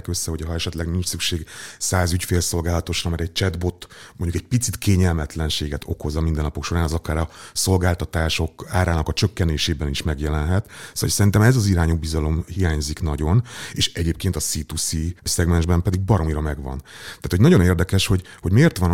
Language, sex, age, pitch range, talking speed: Hungarian, male, 30-49, 80-95 Hz, 170 wpm